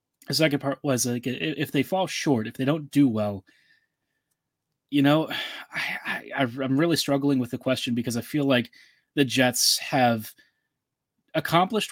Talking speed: 160 wpm